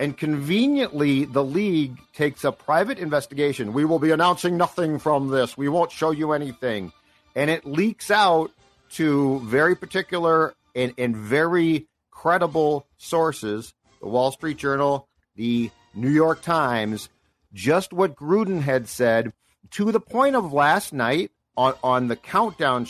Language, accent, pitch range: English, American, 120-165 Hz